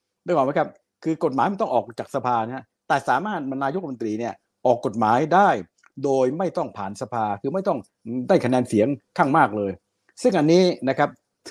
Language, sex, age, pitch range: Thai, male, 60-79, 115-160 Hz